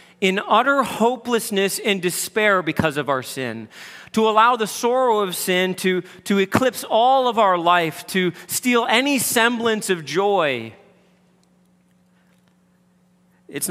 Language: English